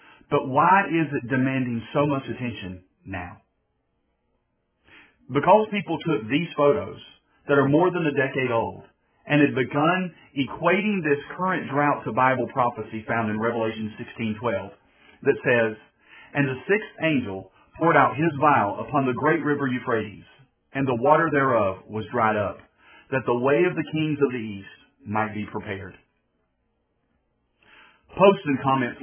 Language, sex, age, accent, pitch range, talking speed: English, male, 40-59, American, 110-145 Hz, 150 wpm